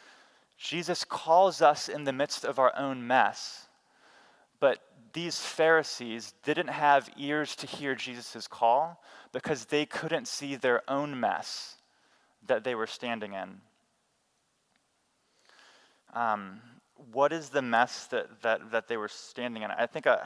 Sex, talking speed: male, 135 wpm